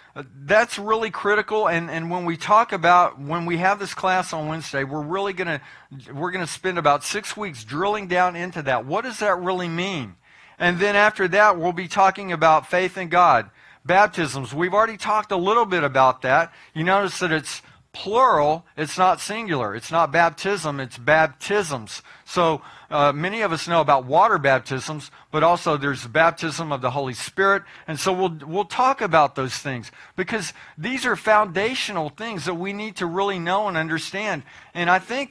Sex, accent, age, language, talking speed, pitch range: male, American, 50-69, English, 190 wpm, 155-200 Hz